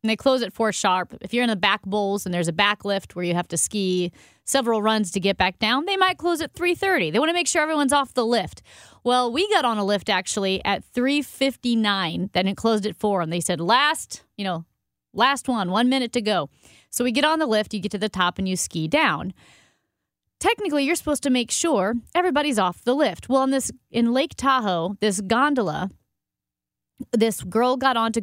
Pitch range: 185-260 Hz